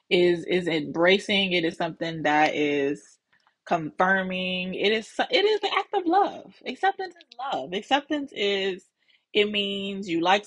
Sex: female